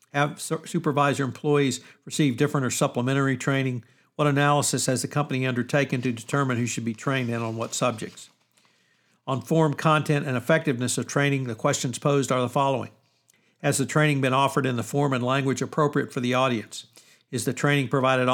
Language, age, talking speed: English, 60-79, 180 wpm